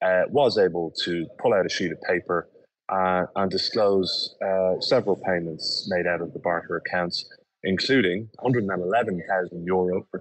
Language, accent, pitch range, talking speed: English, British, 85-95 Hz, 145 wpm